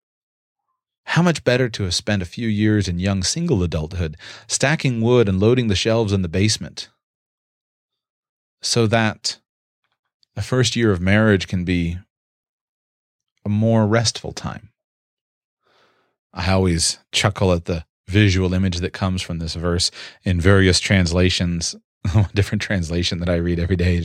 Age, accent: 30-49, American